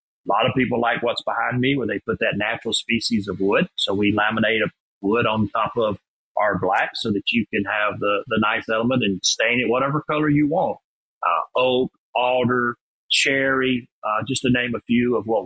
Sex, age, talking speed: male, 40-59, 210 wpm